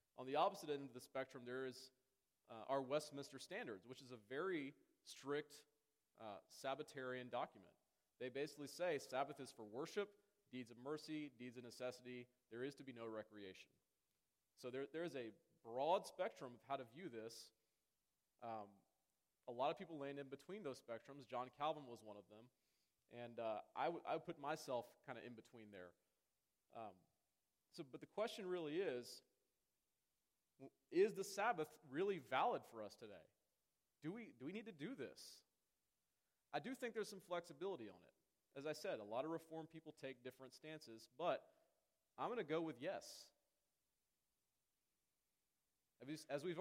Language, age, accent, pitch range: English, 30-49, American, 125-160 Hz